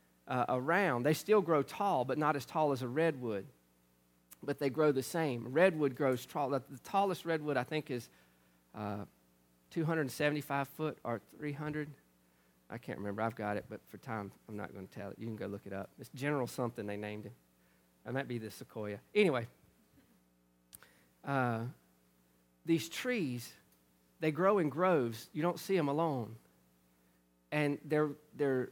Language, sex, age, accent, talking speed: English, male, 40-59, American, 165 wpm